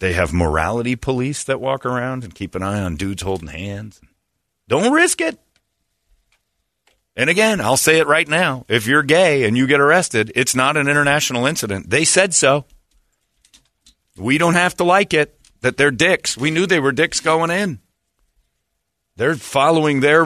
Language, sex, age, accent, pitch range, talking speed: English, male, 40-59, American, 90-150 Hz, 175 wpm